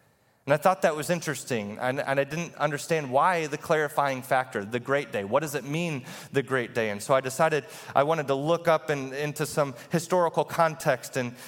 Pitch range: 120-155 Hz